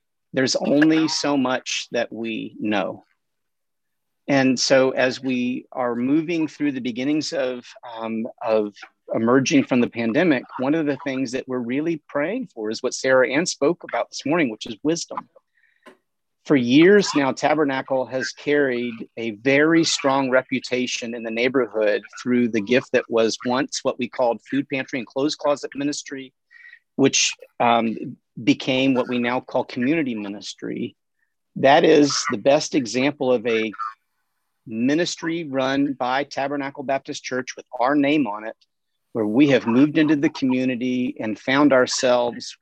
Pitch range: 125-150 Hz